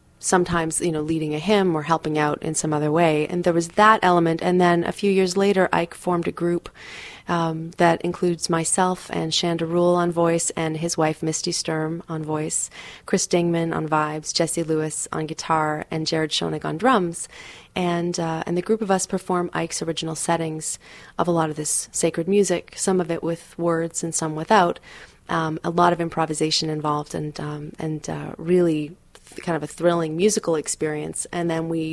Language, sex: English, female